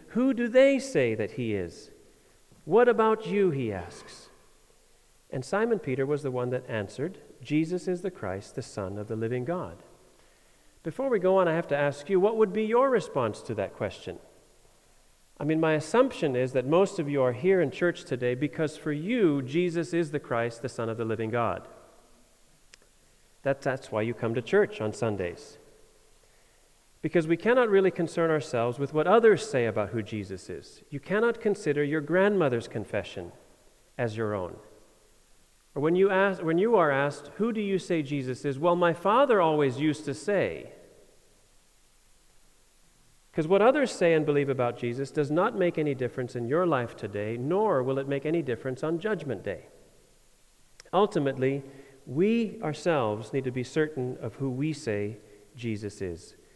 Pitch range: 125-190 Hz